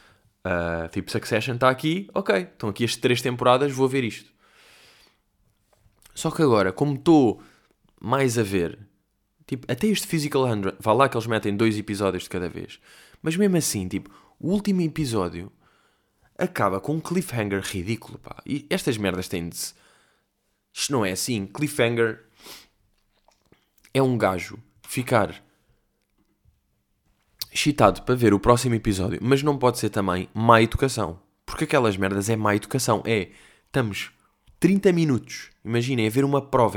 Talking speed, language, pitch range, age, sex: 150 wpm, Portuguese, 100-145 Hz, 20-39, male